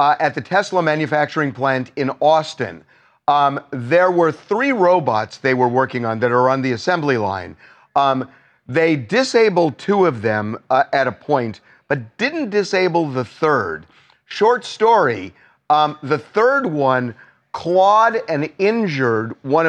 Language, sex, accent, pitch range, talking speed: English, male, American, 130-180 Hz, 145 wpm